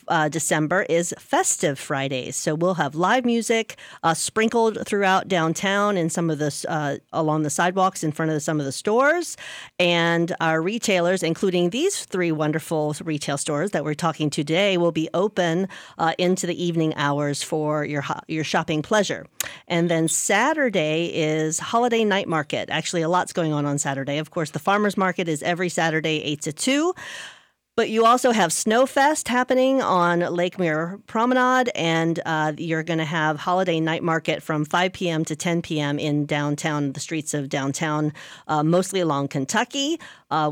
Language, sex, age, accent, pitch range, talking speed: English, female, 40-59, American, 155-200 Hz, 175 wpm